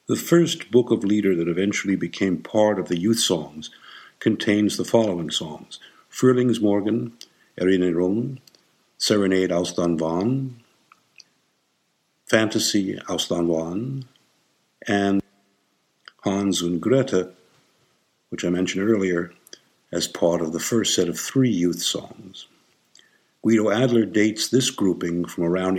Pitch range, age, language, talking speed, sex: 90-110 Hz, 60-79, English, 115 wpm, male